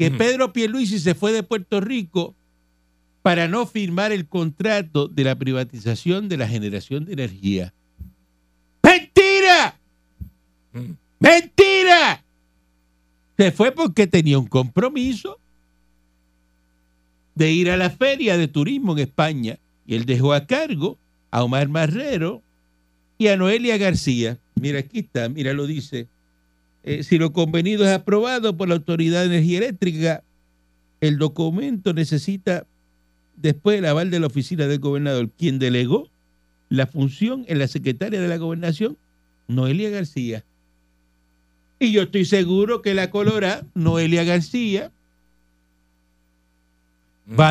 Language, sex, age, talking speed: Spanish, male, 60-79, 130 wpm